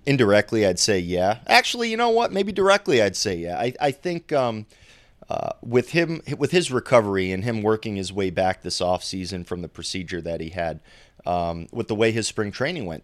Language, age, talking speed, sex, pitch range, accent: English, 30-49, 210 wpm, male, 90-115 Hz, American